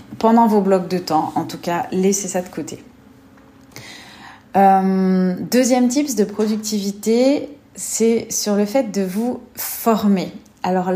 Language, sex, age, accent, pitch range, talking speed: French, female, 30-49, French, 180-220 Hz, 135 wpm